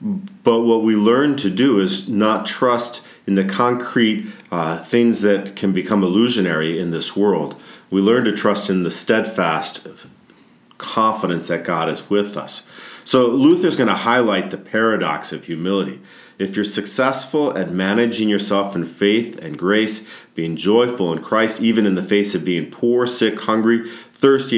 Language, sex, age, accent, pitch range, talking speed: English, male, 50-69, American, 95-120 Hz, 165 wpm